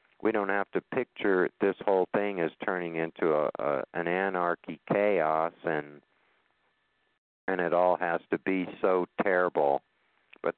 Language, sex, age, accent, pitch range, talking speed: English, male, 50-69, American, 85-95 Hz, 145 wpm